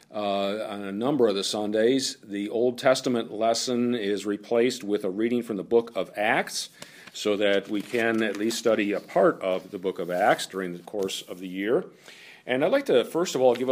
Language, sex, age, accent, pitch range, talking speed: English, male, 50-69, American, 100-130 Hz, 215 wpm